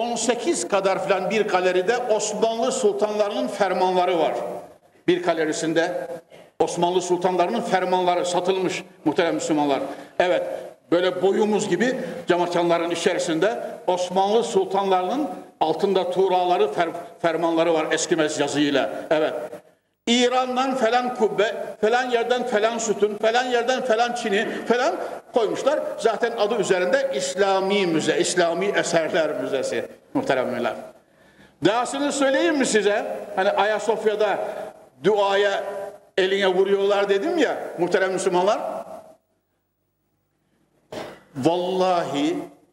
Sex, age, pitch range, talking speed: male, 60-79, 175-225 Hz, 95 wpm